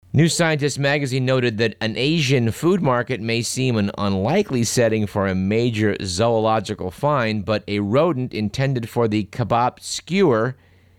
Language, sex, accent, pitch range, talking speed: English, male, American, 95-125 Hz, 145 wpm